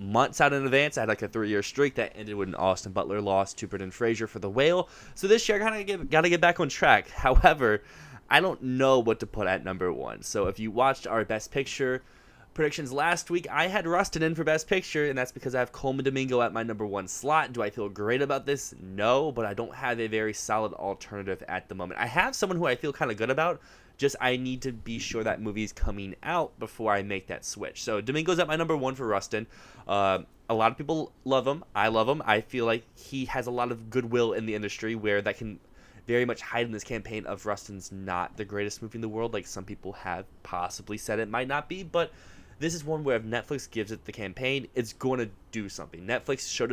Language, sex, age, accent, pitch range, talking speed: English, male, 20-39, American, 105-140 Hz, 250 wpm